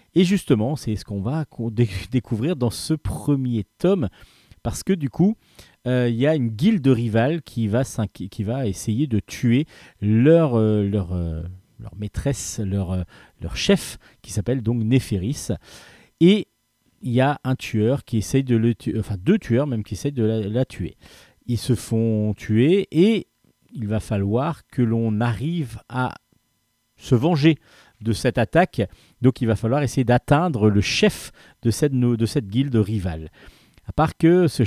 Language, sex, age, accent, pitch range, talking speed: French, male, 40-59, French, 105-140 Hz, 170 wpm